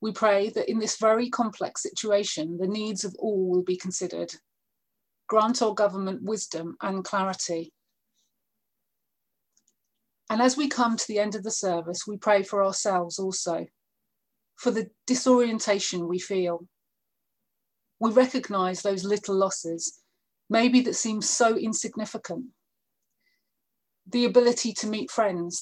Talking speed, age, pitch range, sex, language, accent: 130 wpm, 30-49, 185-225 Hz, female, English, British